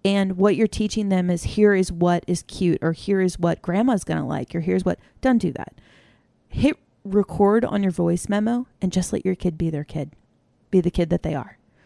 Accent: American